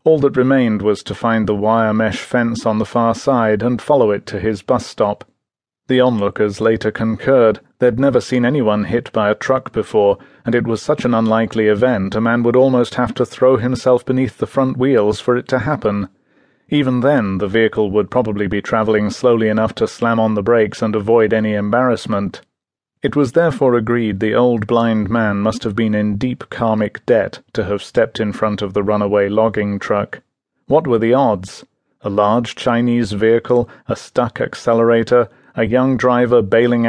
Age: 30-49